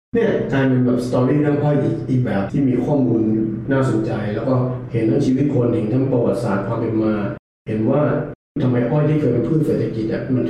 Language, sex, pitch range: Thai, male, 115-130 Hz